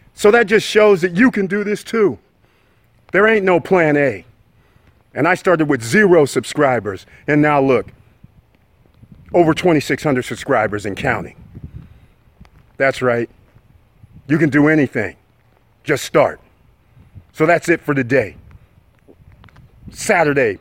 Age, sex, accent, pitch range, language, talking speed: 40-59, male, American, 120-160 Hz, English, 125 wpm